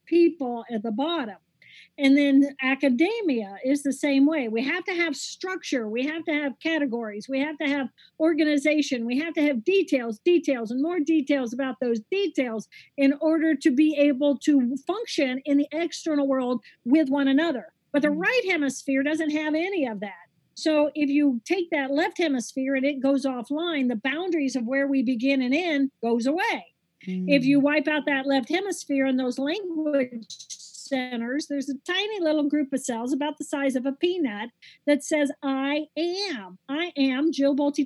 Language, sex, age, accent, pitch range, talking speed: English, female, 50-69, American, 255-310 Hz, 180 wpm